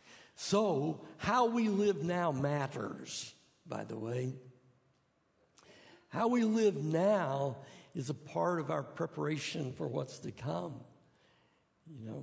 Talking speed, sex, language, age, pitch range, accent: 125 wpm, male, English, 60-79, 135-185 Hz, American